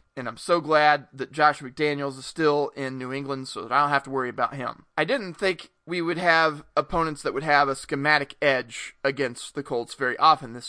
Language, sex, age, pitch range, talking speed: English, male, 30-49, 135-160 Hz, 225 wpm